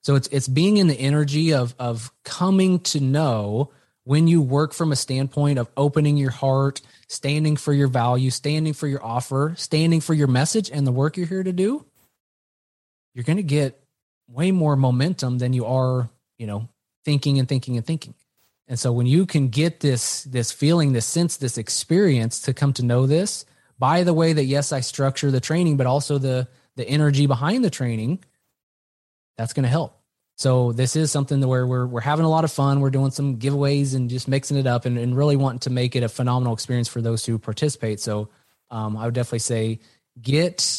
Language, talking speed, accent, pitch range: English, 205 wpm, American, 125-155 Hz